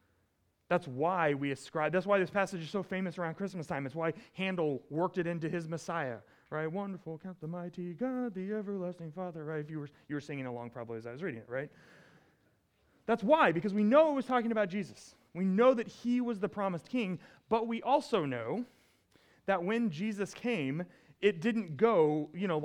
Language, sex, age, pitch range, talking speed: English, male, 30-49, 145-200 Hz, 200 wpm